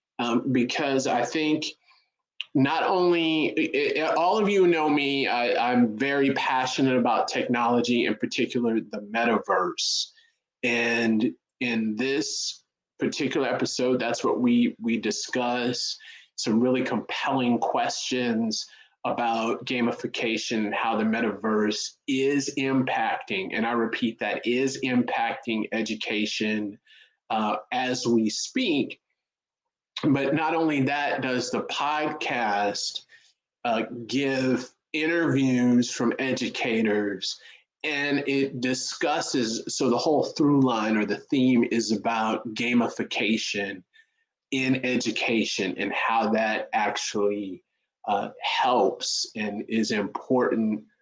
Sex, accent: male, American